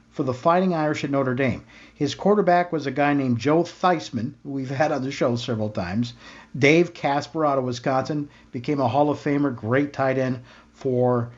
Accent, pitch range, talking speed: American, 130-165 Hz, 185 wpm